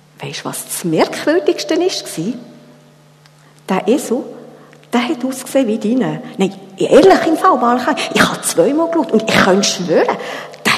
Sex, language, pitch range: female, German, 175-260 Hz